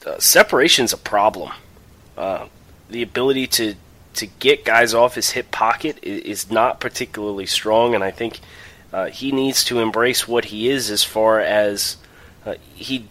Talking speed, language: 160 wpm, English